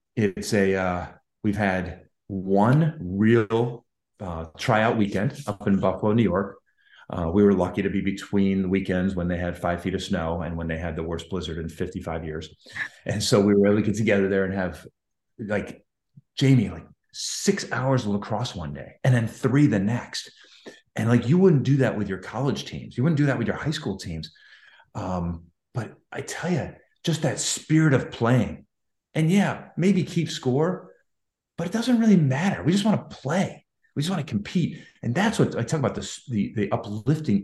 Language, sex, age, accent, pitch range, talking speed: English, male, 30-49, American, 90-125 Hz, 200 wpm